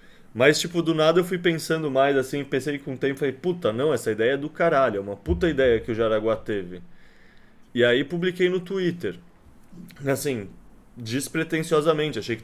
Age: 20-39